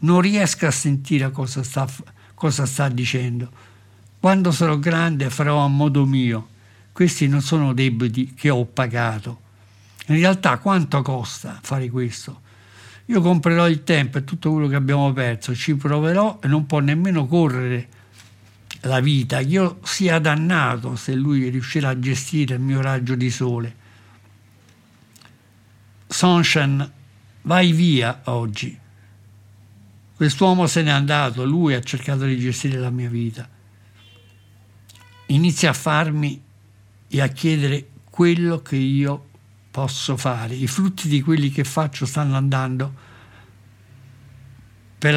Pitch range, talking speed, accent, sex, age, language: 115-150 Hz, 130 wpm, native, male, 60-79, Italian